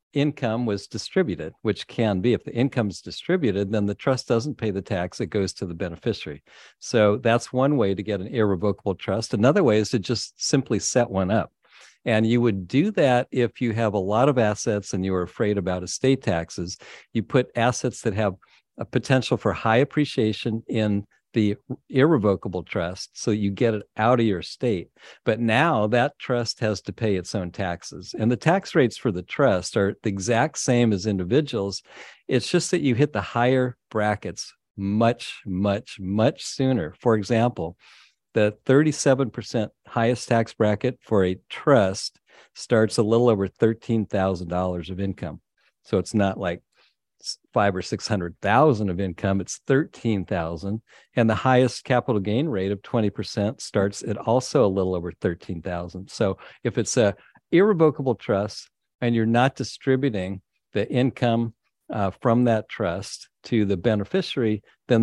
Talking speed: 170 wpm